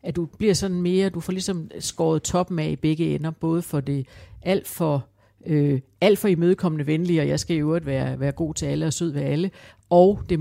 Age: 60-79